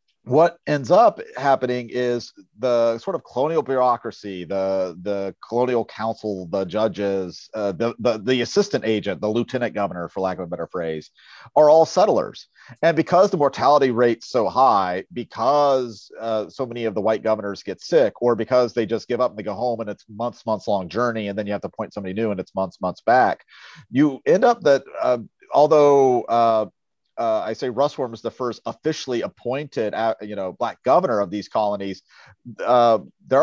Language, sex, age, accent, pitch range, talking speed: English, male, 40-59, American, 105-130 Hz, 190 wpm